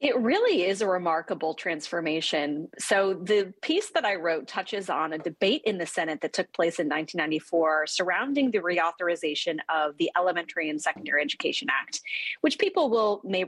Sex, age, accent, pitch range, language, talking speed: female, 30-49, American, 165-230 Hz, English, 170 wpm